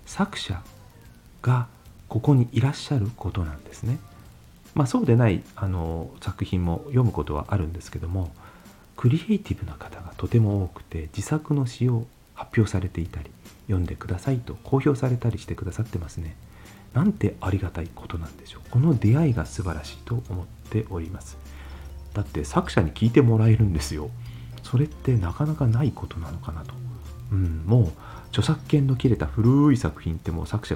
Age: 40-59